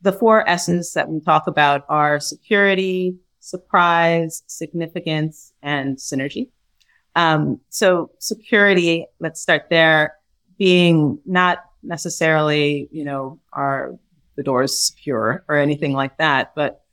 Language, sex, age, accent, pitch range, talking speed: English, female, 30-49, American, 145-175 Hz, 115 wpm